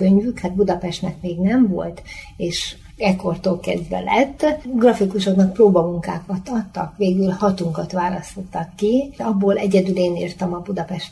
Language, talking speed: Hungarian, 125 wpm